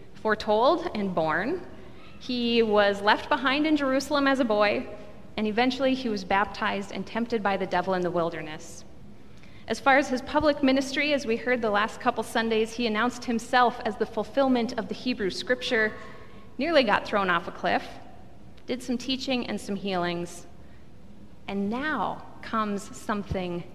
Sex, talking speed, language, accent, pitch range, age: female, 160 wpm, English, American, 205-255 Hz, 30-49